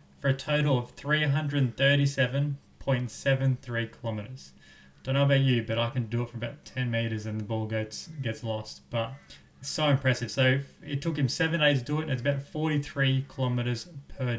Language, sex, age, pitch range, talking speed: English, male, 20-39, 115-140 Hz, 180 wpm